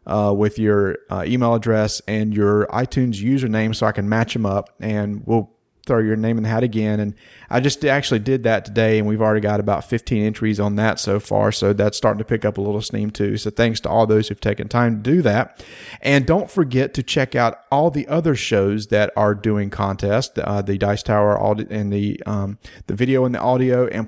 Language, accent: English, American